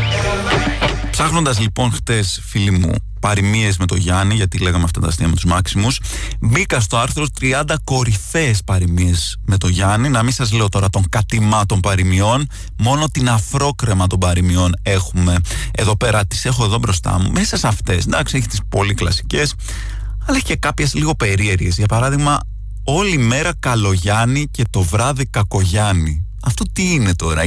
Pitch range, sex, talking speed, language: 95-125 Hz, male, 160 wpm, Greek